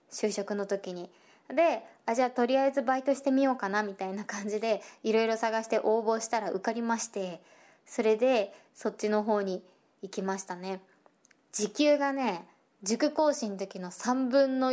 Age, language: 20-39, Japanese